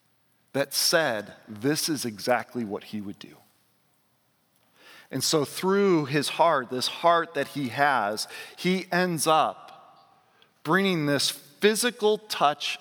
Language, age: English, 40-59